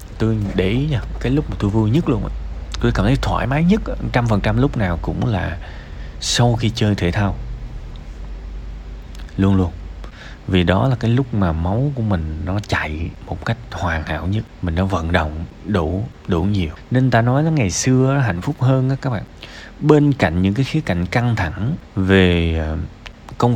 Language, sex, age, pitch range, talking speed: Vietnamese, male, 20-39, 90-130 Hz, 185 wpm